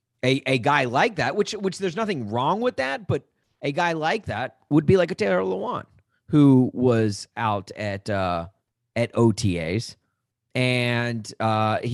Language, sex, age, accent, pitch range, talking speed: English, male, 40-59, American, 110-140 Hz, 160 wpm